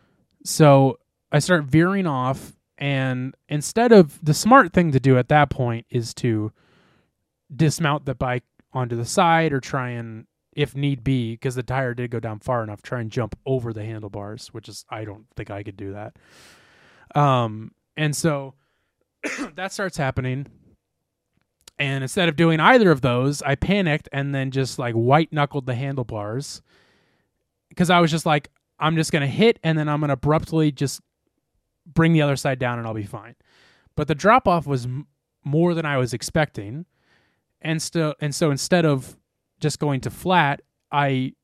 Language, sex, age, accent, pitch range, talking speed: English, male, 20-39, American, 125-160 Hz, 180 wpm